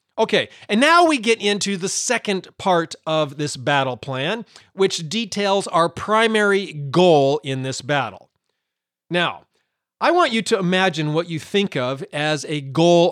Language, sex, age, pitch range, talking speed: English, male, 40-59, 150-205 Hz, 155 wpm